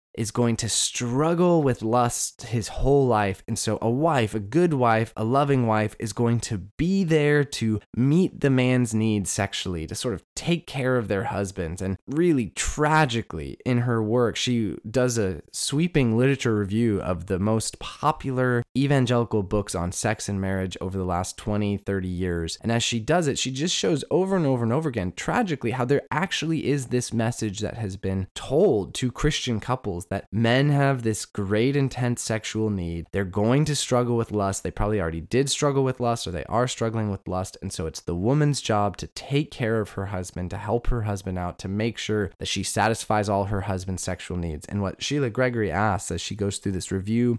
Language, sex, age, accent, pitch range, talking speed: English, male, 20-39, American, 100-125 Hz, 205 wpm